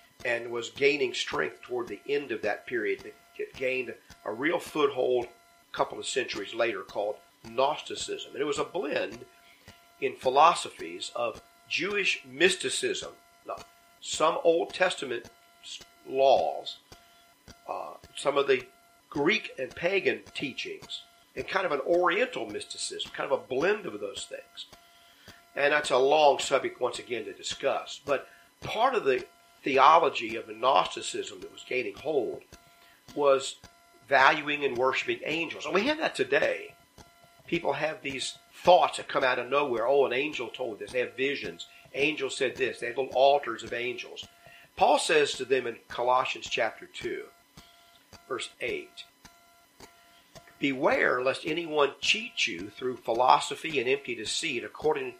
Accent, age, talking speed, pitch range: American, 50-69, 145 wpm, 345-410 Hz